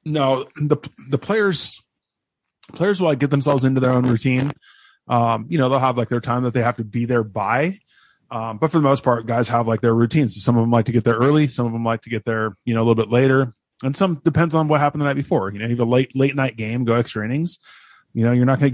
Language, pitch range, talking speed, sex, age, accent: English, 115-135 Hz, 280 wpm, male, 20-39, American